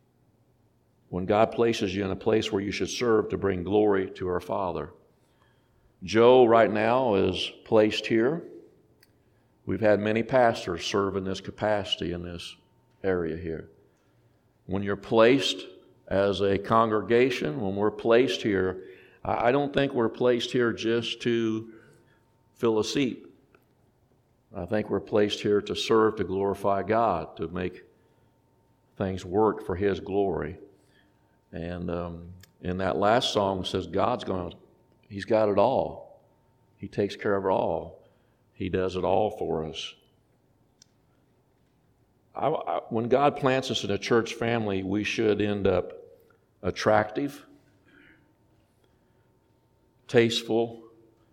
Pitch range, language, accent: 100-120 Hz, English, American